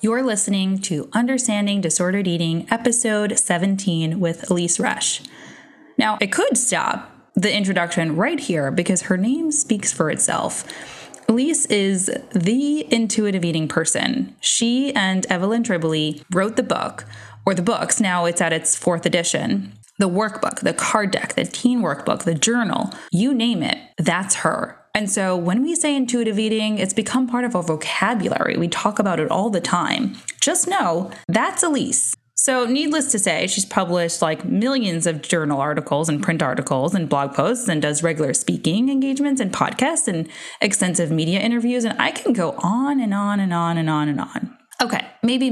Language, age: English, 20-39